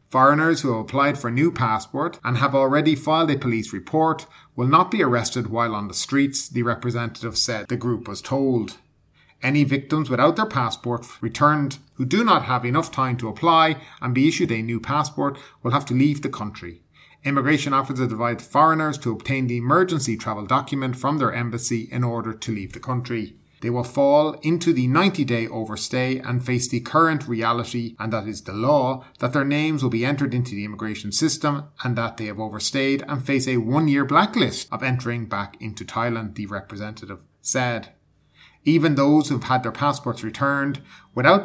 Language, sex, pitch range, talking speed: English, male, 115-145 Hz, 185 wpm